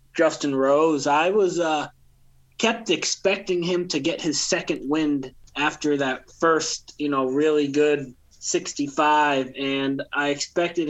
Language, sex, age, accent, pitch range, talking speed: English, male, 20-39, American, 135-160 Hz, 130 wpm